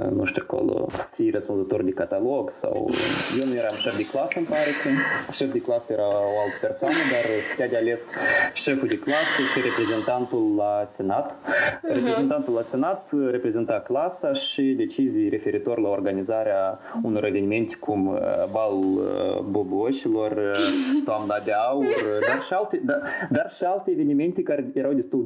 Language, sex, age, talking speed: Romanian, male, 20-39, 150 wpm